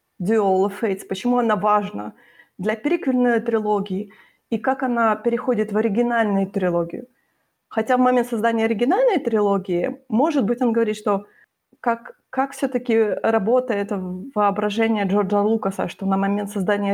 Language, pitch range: Ukrainian, 190-235 Hz